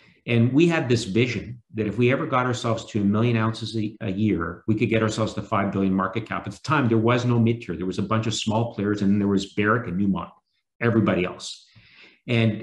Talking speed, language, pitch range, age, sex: 235 wpm, English, 105-125 Hz, 50-69, male